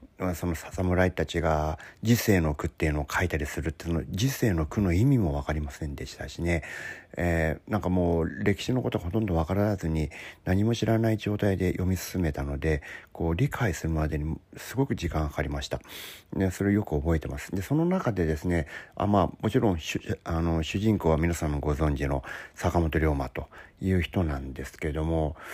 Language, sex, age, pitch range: Japanese, male, 40-59, 80-100 Hz